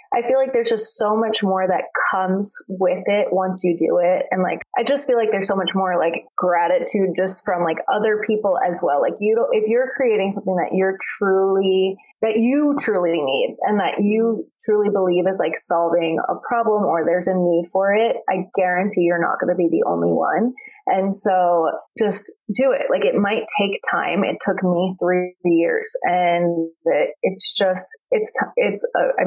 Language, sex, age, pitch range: English, female, 20-39, 180-240 Hz